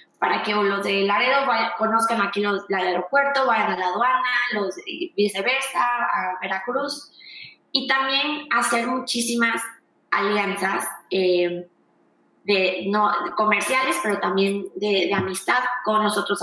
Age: 20-39